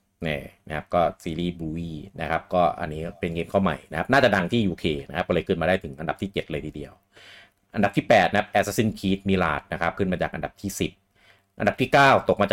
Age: 30-49